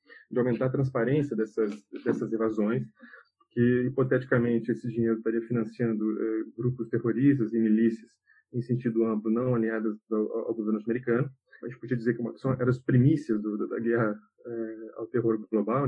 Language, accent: Portuguese, Brazilian